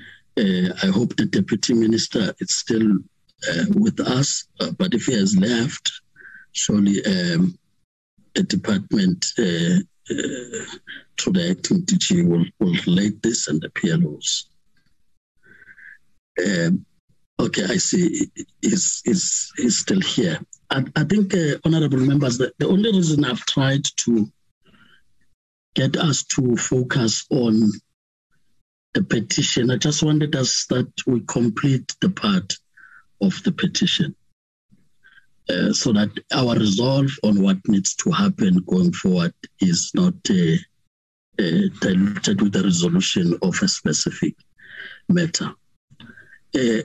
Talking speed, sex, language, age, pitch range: 125 wpm, male, English, 50-69, 140-190 Hz